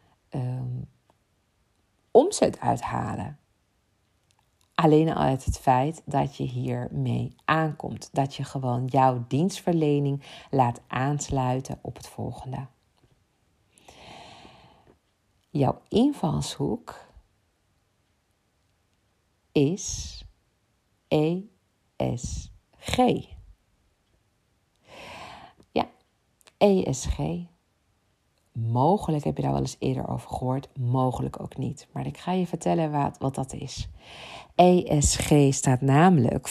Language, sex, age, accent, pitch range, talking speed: Dutch, female, 50-69, Dutch, 115-150 Hz, 80 wpm